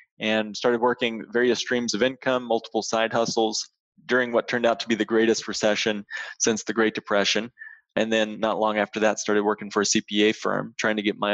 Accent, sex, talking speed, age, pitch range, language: American, male, 205 wpm, 20-39, 105-120 Hz, English